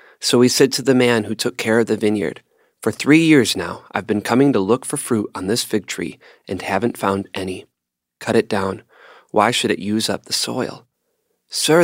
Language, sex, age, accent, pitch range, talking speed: English, male, 30-49, American, 105-130 Hz, 215 wpm